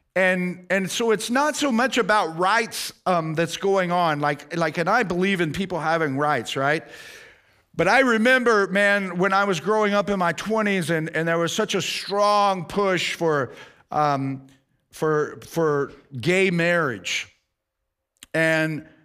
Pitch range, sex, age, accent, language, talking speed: 160-210 Hz, male, 50-69, American, English, 160 wpm